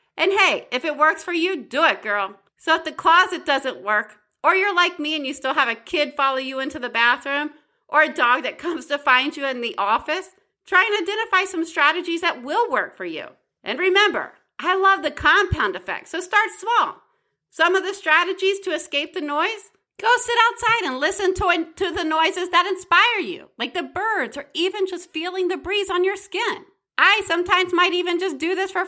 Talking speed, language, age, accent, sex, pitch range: 210 wpm, English, 40-59, American, female, 295-390 Hz